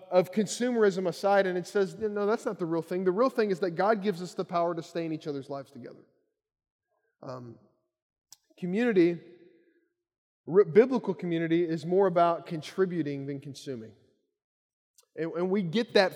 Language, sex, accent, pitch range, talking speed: English, male, American, 170-220 Hz, 165 wpm